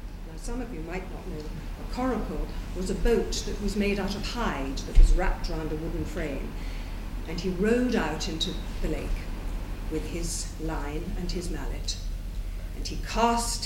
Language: English